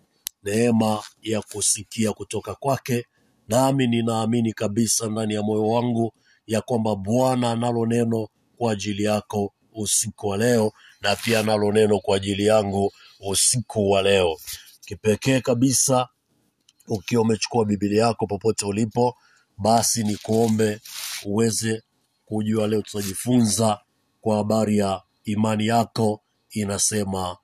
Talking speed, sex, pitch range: 120 wpm, male, 105-120 Hz